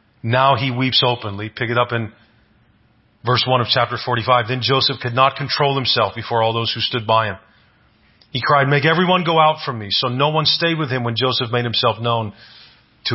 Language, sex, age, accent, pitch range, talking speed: English, male, 30-49, American, 120-160 Hz, 210 wpm